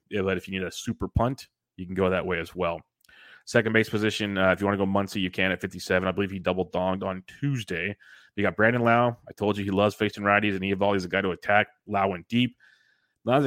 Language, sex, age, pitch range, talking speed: English, male, 20-39, 95-110 Hz, 250 wpm